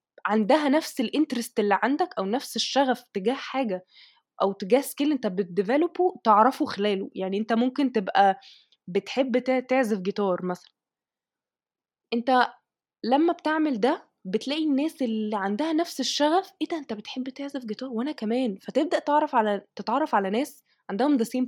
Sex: female